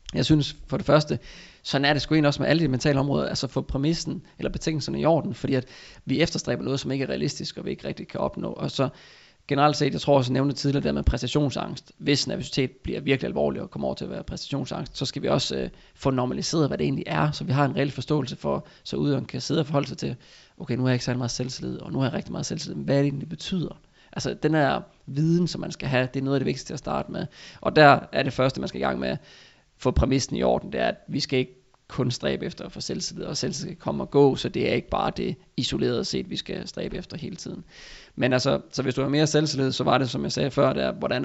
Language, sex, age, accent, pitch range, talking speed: Danish, male, 20-39, native, 125-150 Hz, 280 wpm